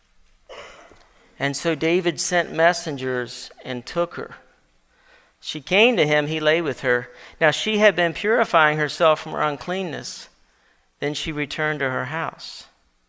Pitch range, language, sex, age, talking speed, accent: 165-220 Hz, English, male, 50-69, 140 wpm, American